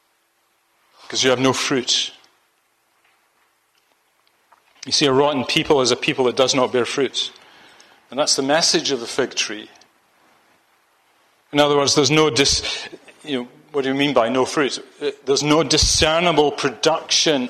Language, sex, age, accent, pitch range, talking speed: English, male, 40-59, British, 130-165 Hz, 145 wpm